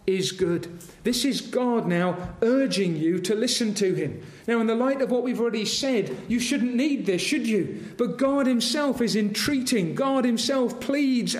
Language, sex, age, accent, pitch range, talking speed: English, male, 40-59, British, 170-230 Hz, 185 wpm